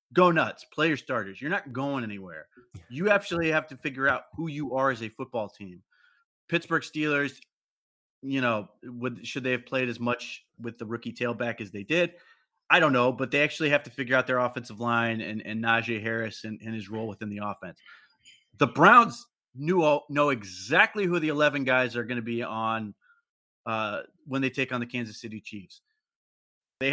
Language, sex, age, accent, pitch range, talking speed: English, male, 30-49, American, 115-135 Hz, 195 wpm